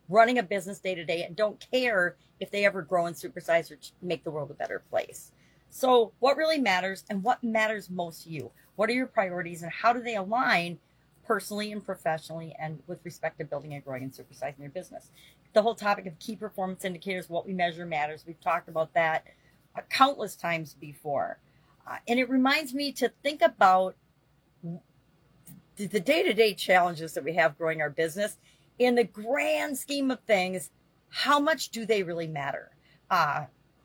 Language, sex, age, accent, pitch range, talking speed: English, female, 40-59, American, 160-210 Hz, 180 wpm